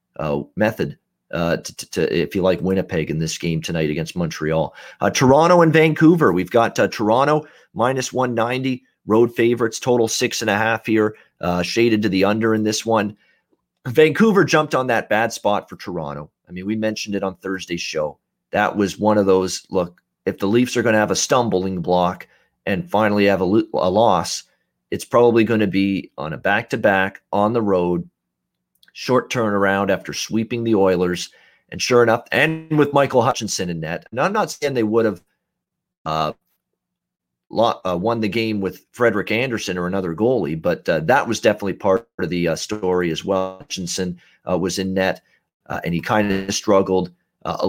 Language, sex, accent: English, male, American